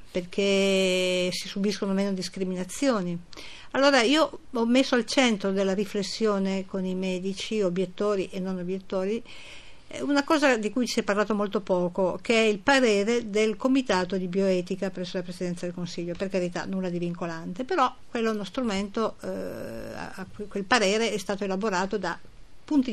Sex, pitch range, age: female, 190-255 Hz, 50-69